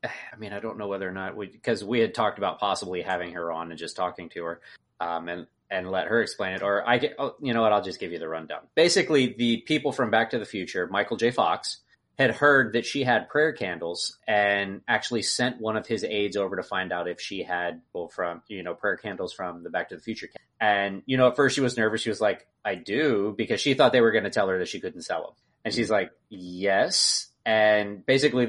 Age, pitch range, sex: 30-49, 100-135 Hz, male